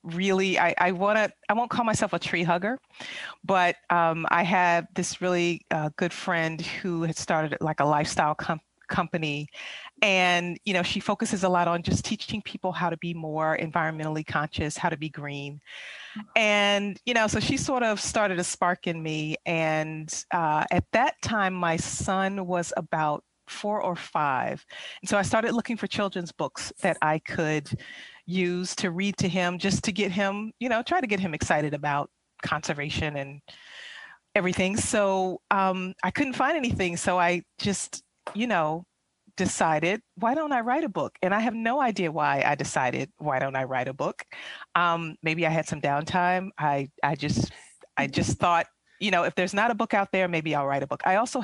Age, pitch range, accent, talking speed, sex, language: 30-49, 155-200 Hz, American, 190 wpm, female, English